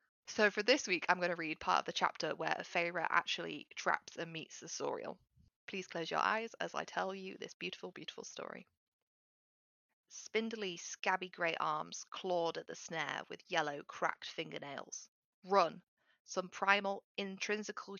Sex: female